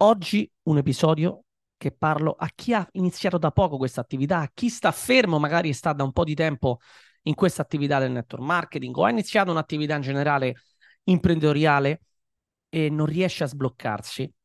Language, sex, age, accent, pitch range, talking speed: Italian, male, 30-49, native, 125-170 Hz, 175 wpm